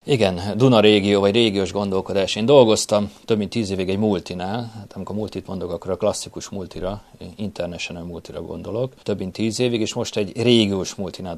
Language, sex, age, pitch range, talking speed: Hungarian, male, 30-49, 95-110 Hz, 180 wpm